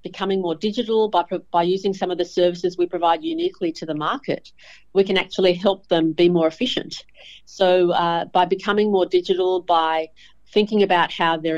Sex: female